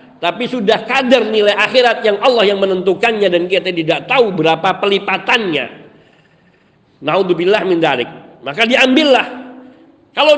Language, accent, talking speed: Indonesian, native, 110 wpm